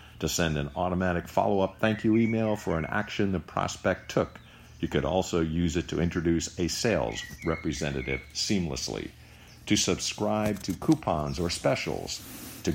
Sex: male